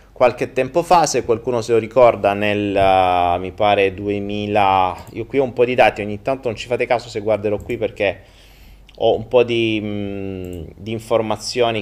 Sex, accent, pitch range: male, native, 105-150 Hz